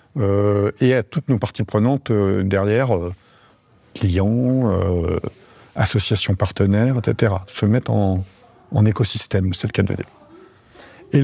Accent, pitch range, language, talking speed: French, 105-140 Hz, French, 135 wpm